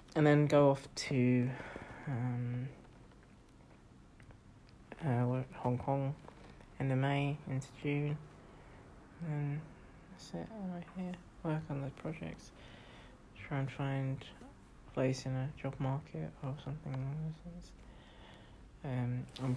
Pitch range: 120-150 Hz